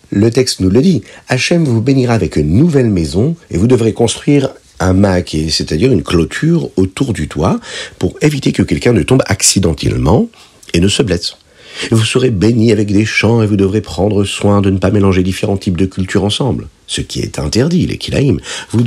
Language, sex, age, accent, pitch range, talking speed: French, male, 50-69, French, 85-115 Hz, 195 wpm